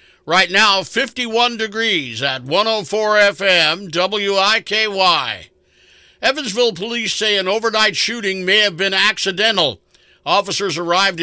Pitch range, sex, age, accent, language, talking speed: 160-195 Hz, male, 50-69, American, English, 105 wpm